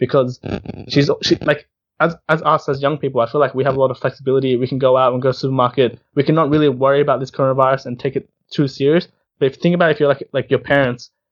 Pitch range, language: 125-140 Hz, English